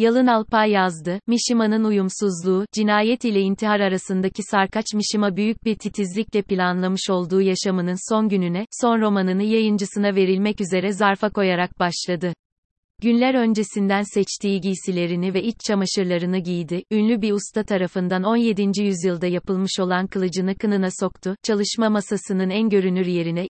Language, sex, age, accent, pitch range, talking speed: Turkish, female, 30-49, native, 185-220 Hz, 130 wpm